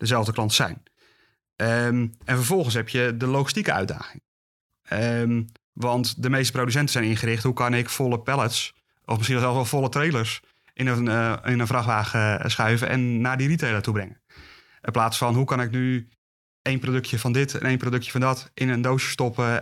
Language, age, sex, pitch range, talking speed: Dutch, 30-49, male, 110-130 Hz, 190 wpm